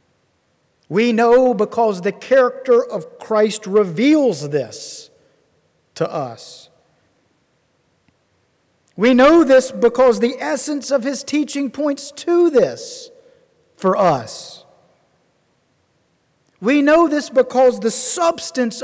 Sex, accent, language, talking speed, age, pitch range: male, American, English, 100 wpm, 50-69, 165-265 Hz